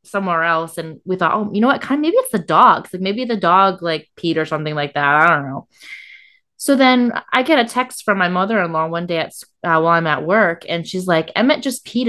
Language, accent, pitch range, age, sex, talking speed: English, American, 175-250 Hz, 20-39, female, 255 wpm